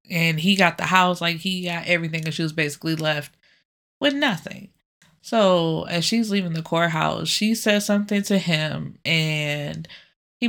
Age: 20-39